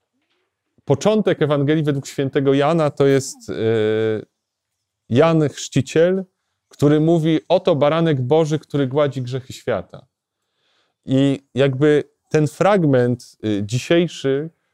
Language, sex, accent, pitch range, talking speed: Polish, male, native, 120-150 Hz, 95 wpm